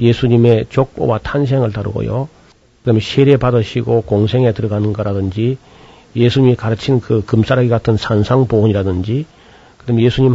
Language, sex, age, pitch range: Korean, male, 40-59, 110-135 Hz